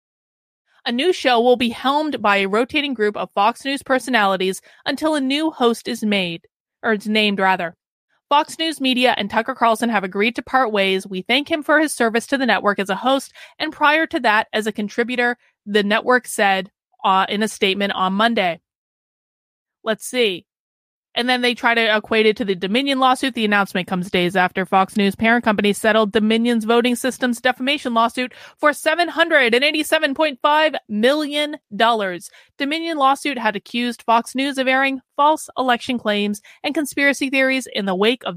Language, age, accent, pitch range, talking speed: English, 30-49, American, 205-265 Hz, 175 wpm